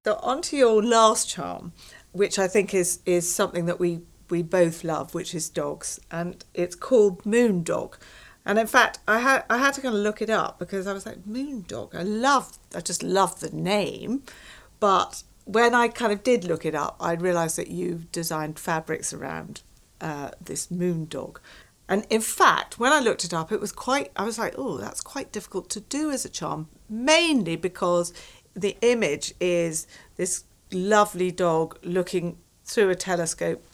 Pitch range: 160-205 Hz